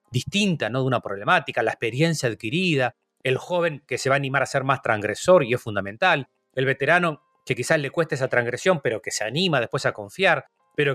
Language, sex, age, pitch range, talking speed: Spanish, male, 30-49, 125-160 Hz, 210 wpm